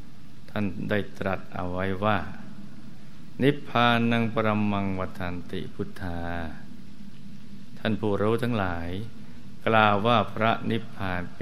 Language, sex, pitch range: Thai, male, 95-115 Hz